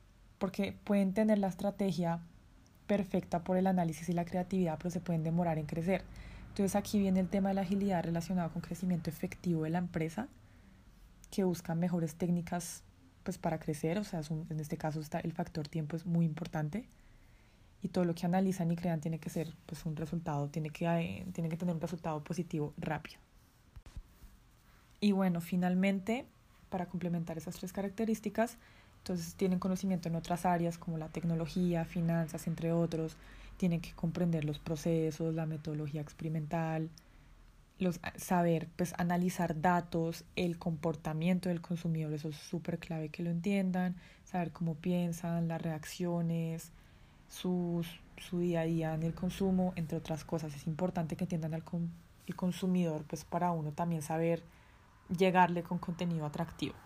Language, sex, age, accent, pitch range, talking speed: Spanish, female, 20-39, Colombian, 165-180 Hz, 165 wpm